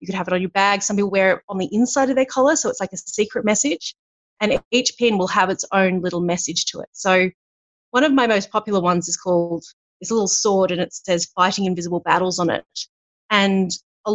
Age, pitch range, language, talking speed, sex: 30-49, 180-210 Hz, English, 240 wpm, female